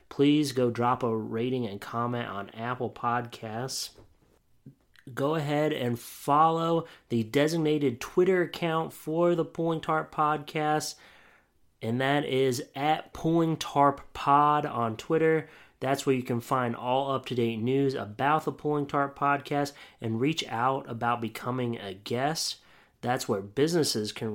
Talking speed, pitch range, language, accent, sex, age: 135 wpm, 115-145 Hz, English, American, male, 30-49